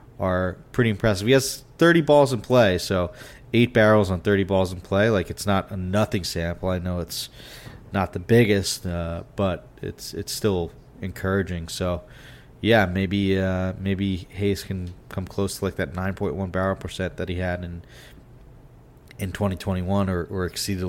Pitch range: 90-110 Hz